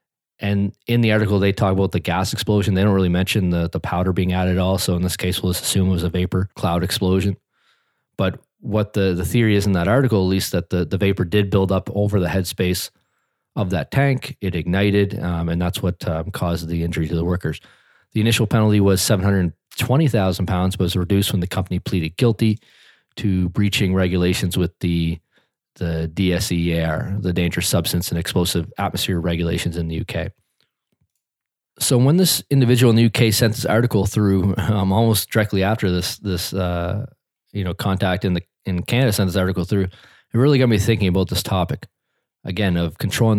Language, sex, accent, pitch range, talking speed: English, male, American, 90-105 Hz, 195 wpm